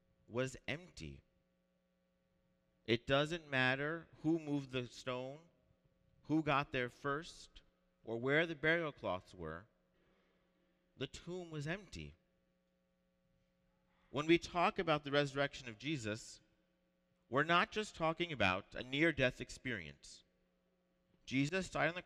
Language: English